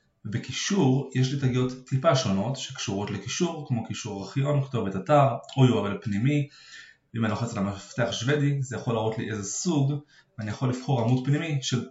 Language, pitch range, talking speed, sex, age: Hebrew, 110-135 Hz, 175 wpm, male, 20-39